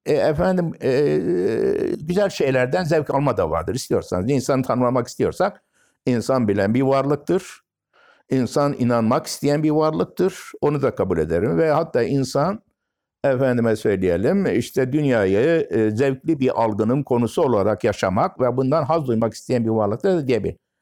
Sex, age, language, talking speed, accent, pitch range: male, 60-79, Turkish, 140 wpm, native, 110-135 Hz